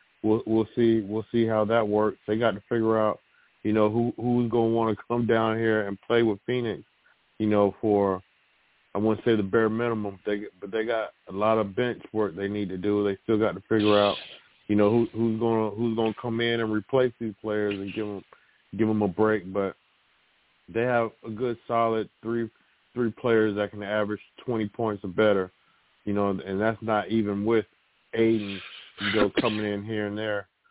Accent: American